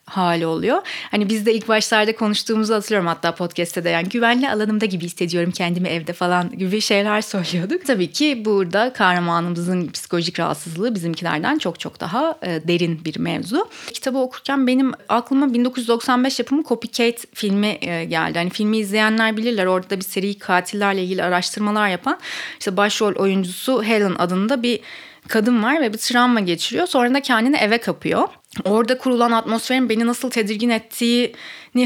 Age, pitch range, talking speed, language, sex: 30-49, 185-245 Hz, 150 wpm, Turkish, female